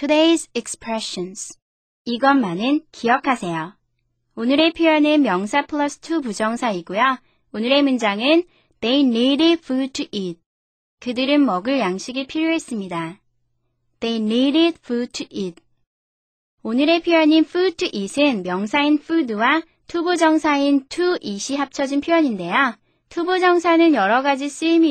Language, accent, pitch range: Korean, native, 200-300 Hz